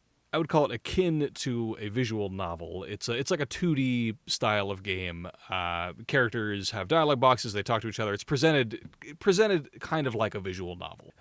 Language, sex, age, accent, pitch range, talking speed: English, male, 30-49, American, 100-135 Hz, 200 wpm